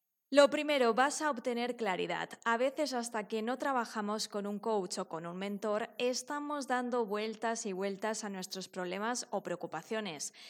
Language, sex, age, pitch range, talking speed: Spanish, female, 20-39, 195-235 Hz, 165 wpm